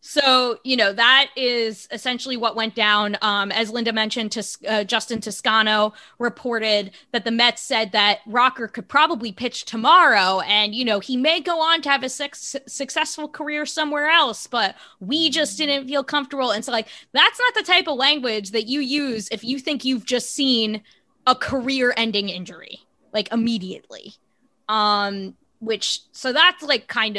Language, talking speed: English, 170 wpm